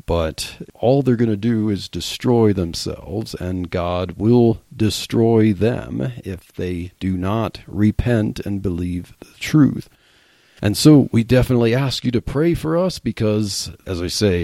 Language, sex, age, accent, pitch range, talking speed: English, male, 40-59, American, 95-115 Hz, 155 wpm